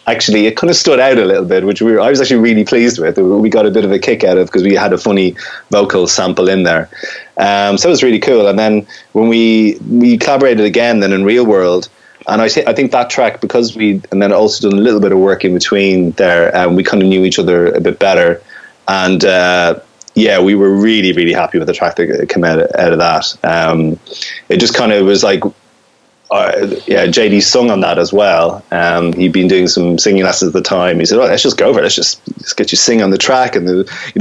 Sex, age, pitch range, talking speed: male, 30-49, 90-110 Hz, 255 wpm